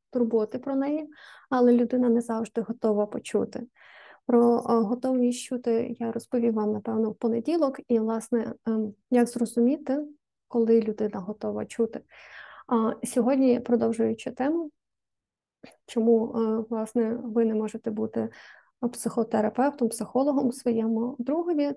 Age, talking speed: 20-39, 115 wpm